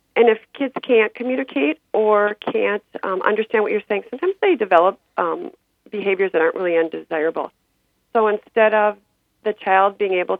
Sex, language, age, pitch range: female, English, 40-59, 195-245 Hz